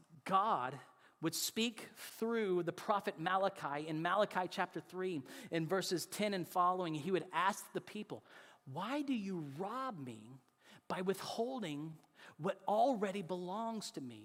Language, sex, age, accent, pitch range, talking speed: English, male, 40-59, American, 165-215 Hz, 140 wpm